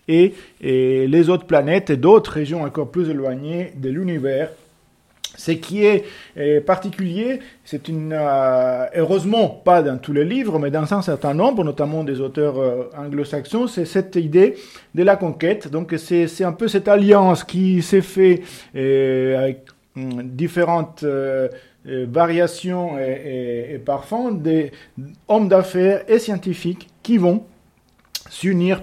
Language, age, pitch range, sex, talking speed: French, 40-59, 140-185 Hz, male, 135 wpm